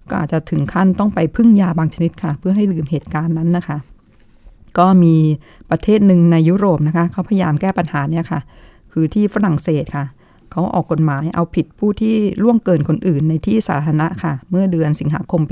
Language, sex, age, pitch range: Thai, female, 20-39, 155-190 Hz